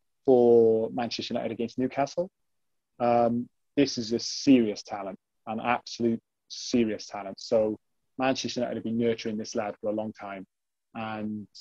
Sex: male